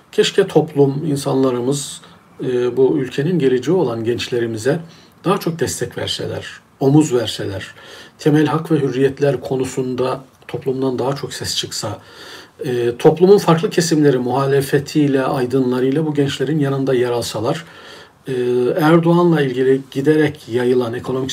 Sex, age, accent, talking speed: male, 50-69, native, 110 wpm